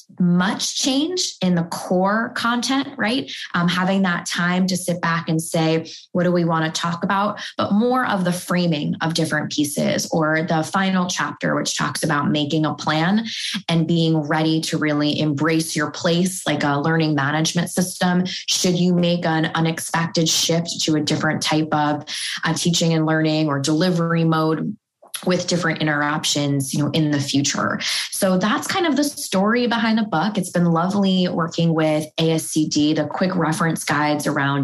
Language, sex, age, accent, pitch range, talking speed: English, female, 20-39, American, 155-180 Hz, 175 wpm